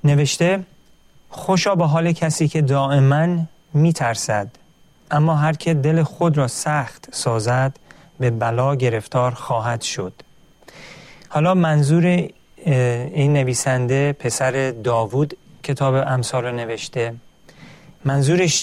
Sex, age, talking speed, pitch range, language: male, 40-59, 105 wpm, 125-160 Hz, Persian